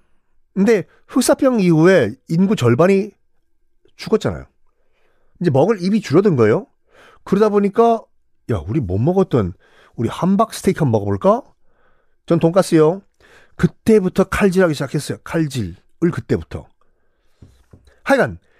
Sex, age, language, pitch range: male, 40-59, Korean, 115-185 Hz